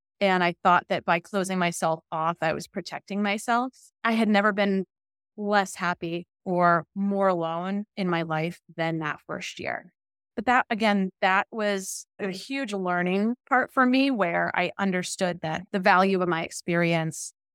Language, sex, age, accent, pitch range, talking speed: English, female, 20-39, American, 175-230 Hz, 165 wpm